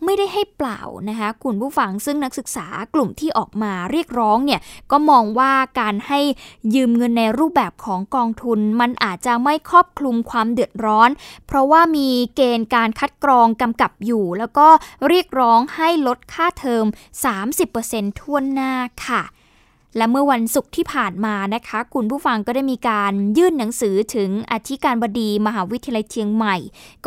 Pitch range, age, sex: 215-275 Hz, 20-39, female